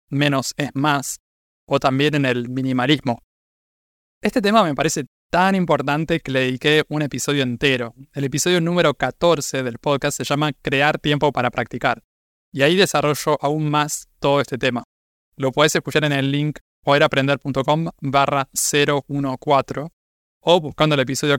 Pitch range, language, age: 130-150 Hz, Spanish, 20-39